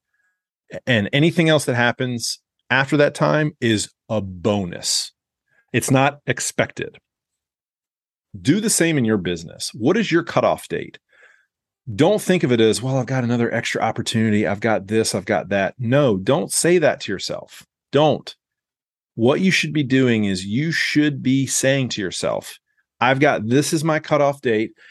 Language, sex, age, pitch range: English, male, 40-59, 105-140 Hz